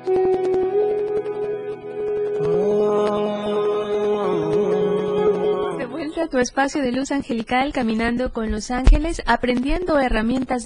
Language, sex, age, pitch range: Spanish, female, 30-49, 200-255 Hz